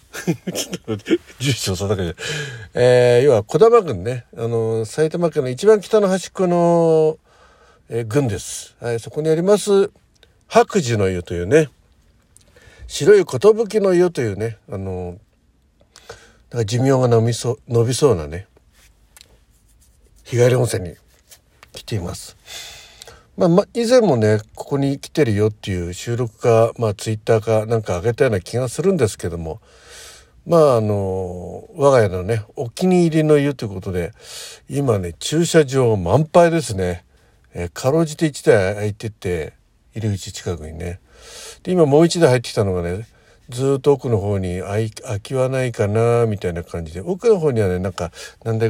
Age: 60-79